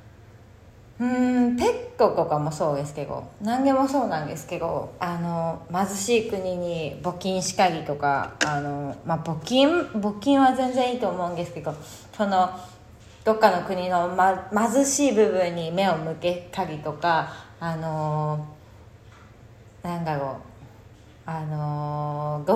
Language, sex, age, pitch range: Japanese, female, 20-39, 160-255 Hz